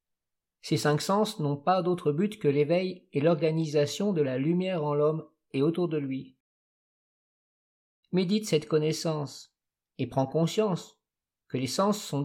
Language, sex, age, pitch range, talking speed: French, male, 50-69, 145-180 Hz, 145 wpm